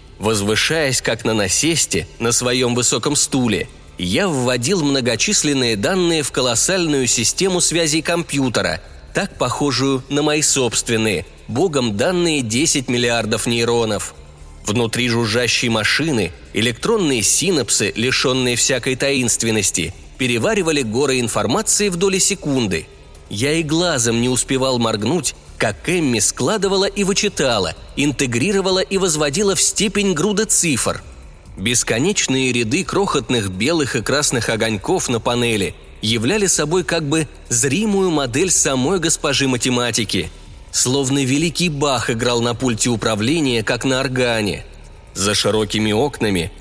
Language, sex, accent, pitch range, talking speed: Russian, male, native, 110-155 Hz, 115 wpm